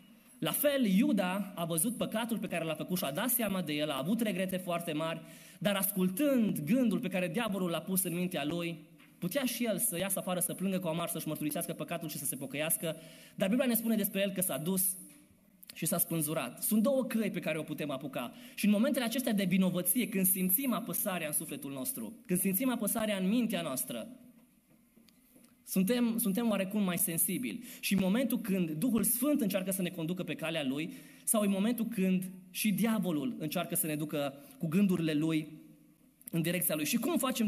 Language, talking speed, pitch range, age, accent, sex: Romanian, 200 wpm, 170-230 Hz, 20-39, native, male